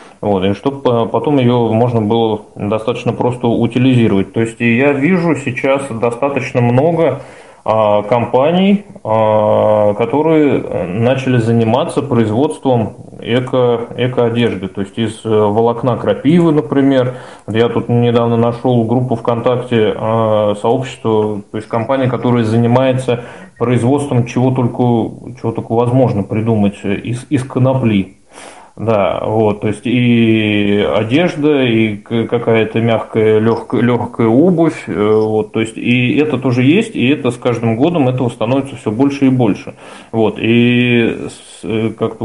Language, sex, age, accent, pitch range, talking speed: Russian, male, 20-39, native, 110-125 Hz, 110 wpm